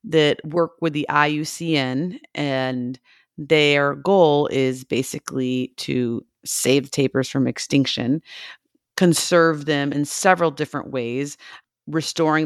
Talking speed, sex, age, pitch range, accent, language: 105 wpm, female, 40-59, 135-160 Hz, American, English